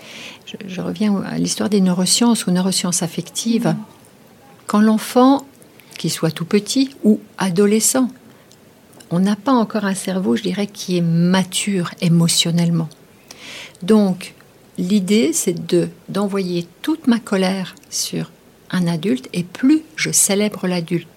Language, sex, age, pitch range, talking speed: French, female, 60-79, 170-215 Hz, 130 wpm